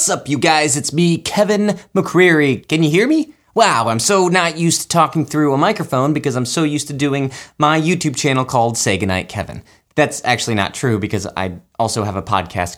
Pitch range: 105-150 Hz